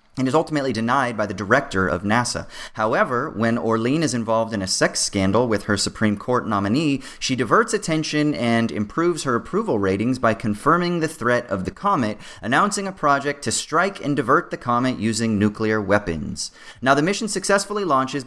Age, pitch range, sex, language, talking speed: 30-49, 105-145 Hz, male, English, 180 wpm